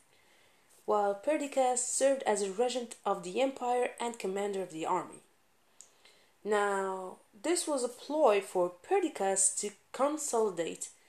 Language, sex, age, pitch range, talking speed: English, female, 30-49, 195-290 Hz, 125 wpm